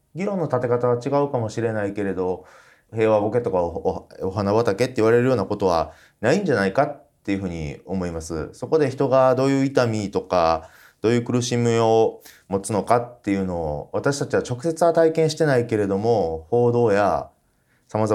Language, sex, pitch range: Japanese, male, 100-150 Hz